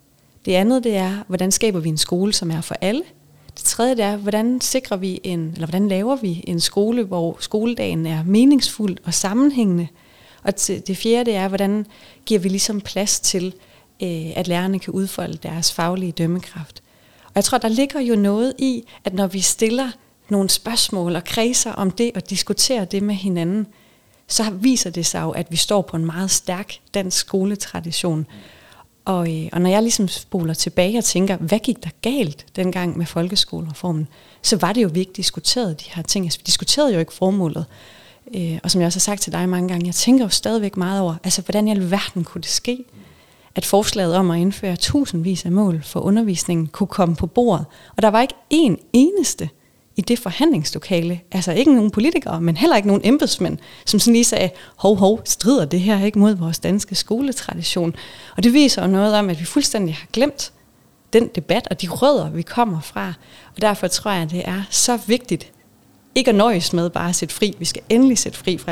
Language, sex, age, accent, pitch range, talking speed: Danish, female, 30-49, native, 170-220 Hz, 200 wpm